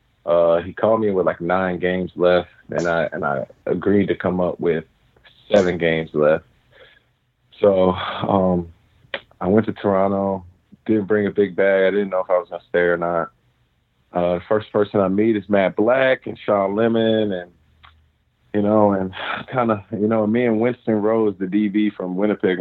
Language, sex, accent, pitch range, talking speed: English, male, American, 90-110 Hz, 185 wpm